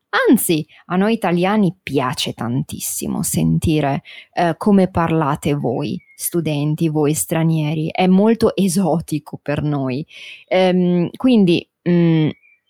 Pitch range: 165-210 Hz